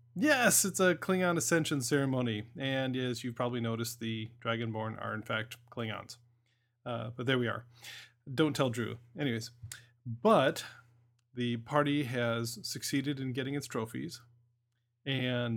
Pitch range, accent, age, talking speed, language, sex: 120-145 Hz, American, 30-49, 145 wpm, English, male